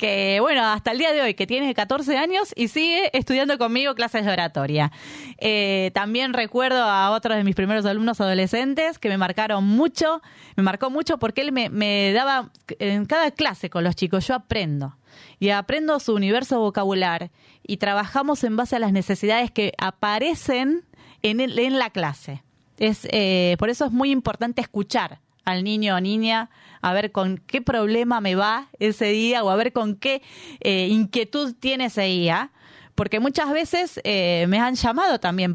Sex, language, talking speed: female, Spanish, 180 wpm